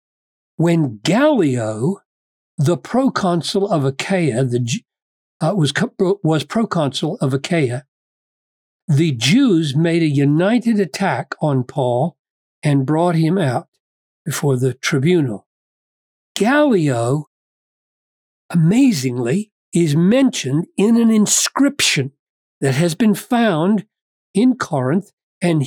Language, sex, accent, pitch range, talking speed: English, male, American, 140-195 Hz, 100 wpm